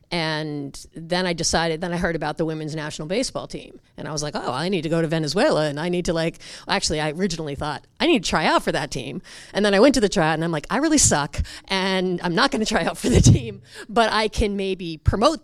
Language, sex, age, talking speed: English, female, 30-49, 270 wpm